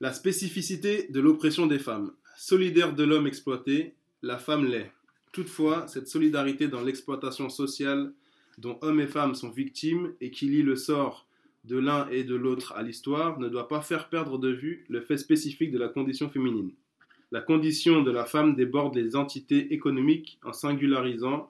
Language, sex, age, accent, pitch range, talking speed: French, male, 20-39, French, 130-155 Hz, 175 wpm